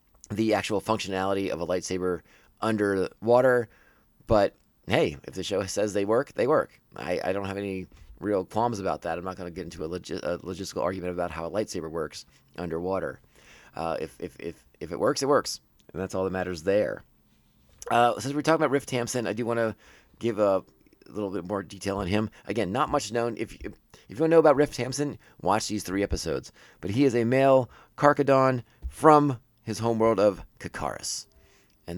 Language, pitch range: English, 90-120 Hz